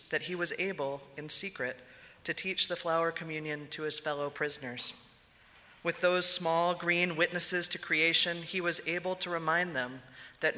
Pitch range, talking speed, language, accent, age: 140-170 Hz, 165 wpm, English, American, 40-59